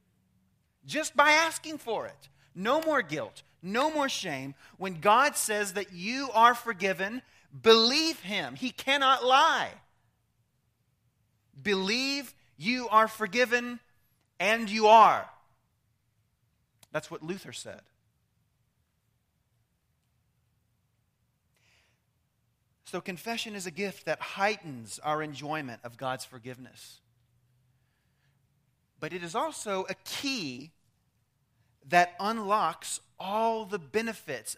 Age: 30-49